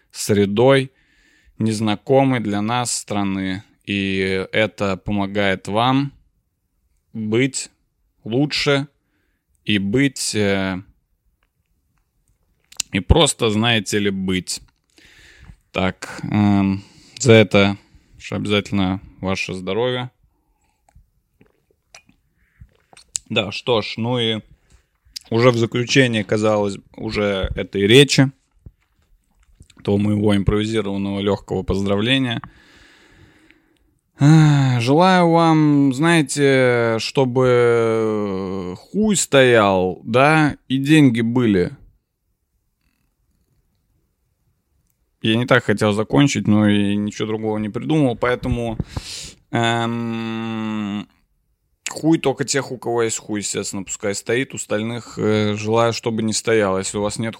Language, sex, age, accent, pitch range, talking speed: Russian, male, 20-39, native, 100-125 Hz, 90 wpm